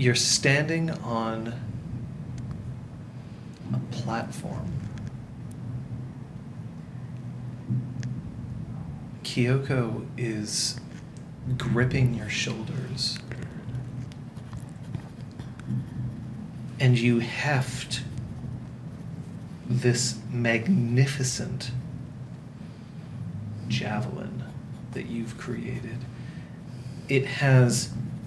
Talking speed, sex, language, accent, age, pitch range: 45 wpm, male, English, American, 40-59, 115-135 Hz